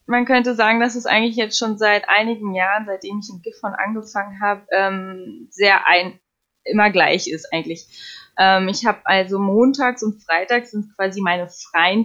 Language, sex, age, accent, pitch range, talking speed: German, female, 20-39, German, 195-235 Hz, 165 wpm